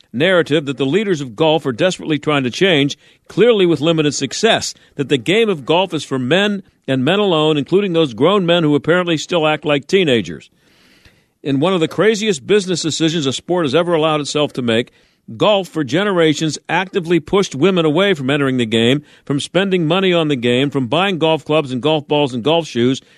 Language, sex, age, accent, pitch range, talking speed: English, male, 50-69, American, 135-175 Hz, 200 wpm